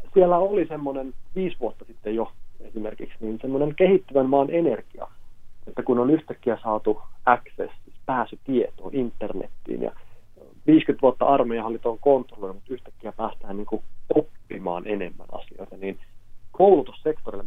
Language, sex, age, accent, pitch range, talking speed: Finnish, male, 30-49, native, 105-150 Hz, 120 wpm